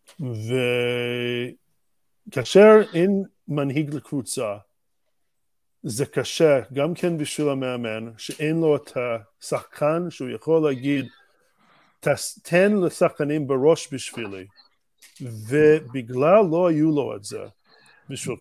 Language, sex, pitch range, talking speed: Hebrew, male, 130-175 Hz, 90 wpm